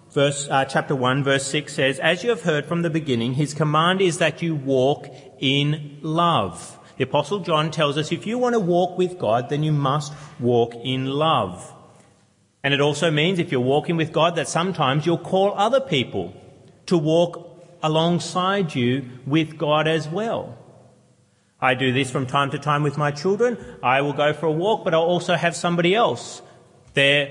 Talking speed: 185 wpm